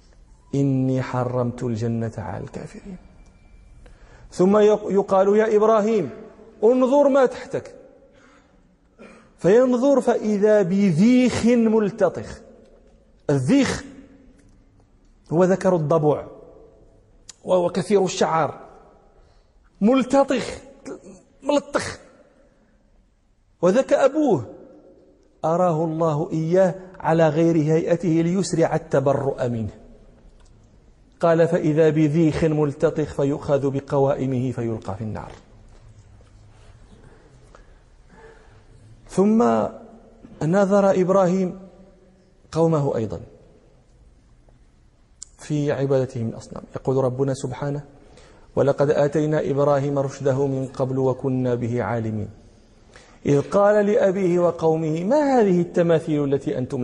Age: 40-59